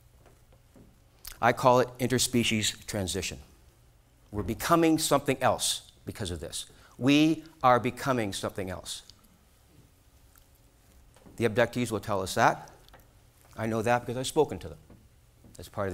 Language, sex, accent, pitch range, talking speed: English, male, American, 100-130 Hz, 130 wpm